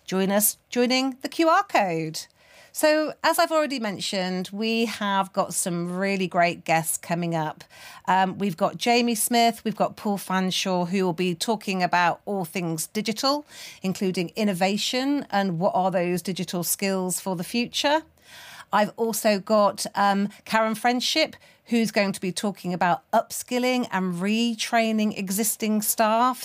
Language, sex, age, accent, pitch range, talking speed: English, female, 40-59, British, 195-270 Hz, 145 wpm